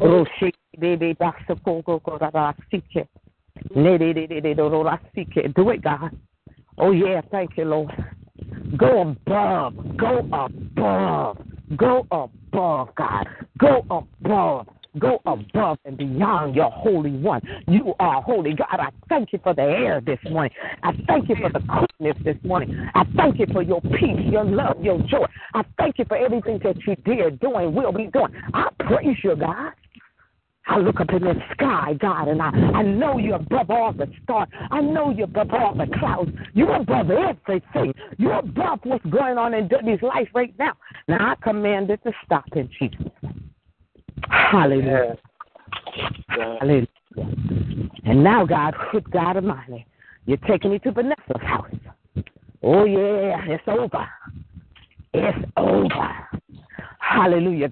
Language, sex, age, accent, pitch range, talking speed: English, female, 50-69, American, 150-215 Hz, 140 wpm